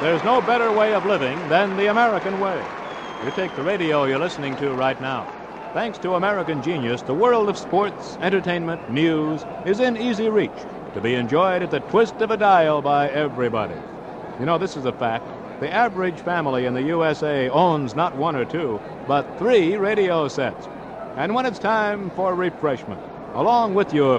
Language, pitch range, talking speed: English, 140-200 Hz, 185 wpm